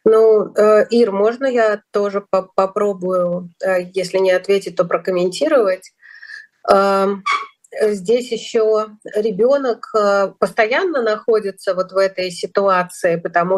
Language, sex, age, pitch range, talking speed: Russian, female, 30-49, 185-215 Hz, 95 wpm